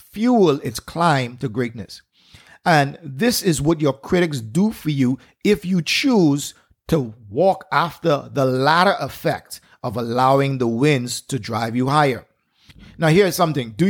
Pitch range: 130-170 Hz